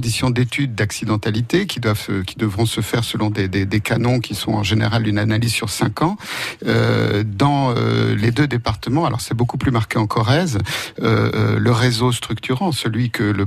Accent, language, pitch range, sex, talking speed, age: French, French, 110-140 Hz, male, 185 wpm, 50-69